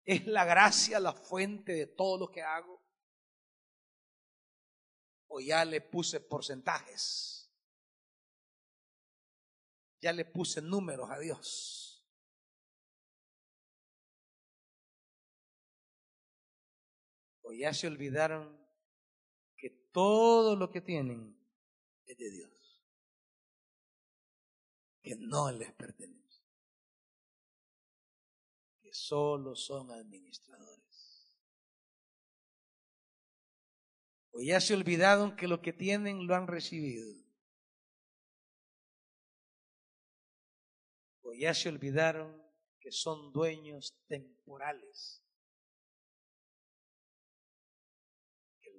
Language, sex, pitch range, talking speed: Spanish, male, 155-220 Hz, 75 wpm